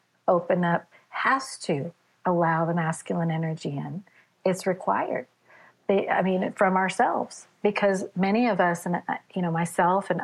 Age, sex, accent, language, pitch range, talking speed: 40-59, female, American, English, 165-195 Hz, 140 wpm